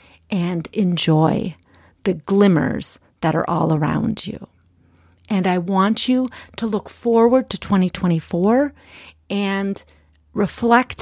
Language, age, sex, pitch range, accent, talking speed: English, 40-59, female, 185-235 Hz, American, 110 wpm